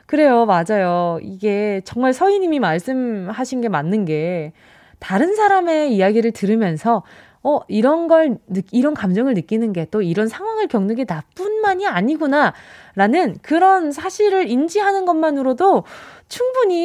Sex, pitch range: female, 200-310 Hz